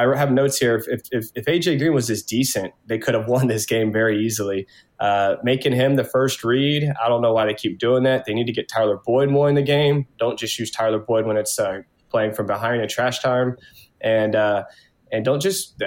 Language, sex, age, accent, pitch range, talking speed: English, male, 20-39, American, 110-135 Hz, 240 wpm